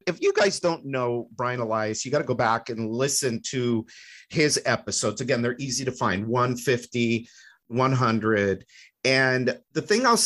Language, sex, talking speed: English, male, 165 wpm